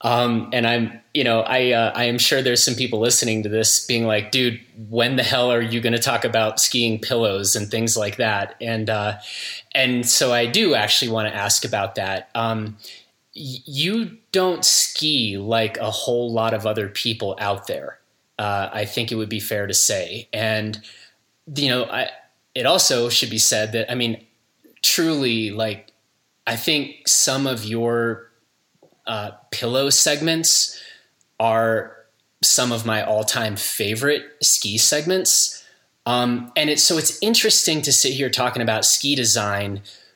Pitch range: 110-135 Hz